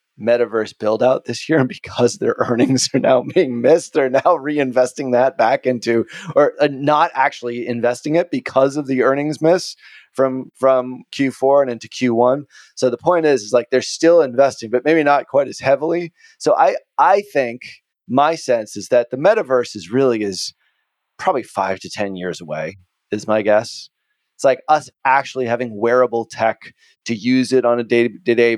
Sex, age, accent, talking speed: male, 30-49, American, 180 wpm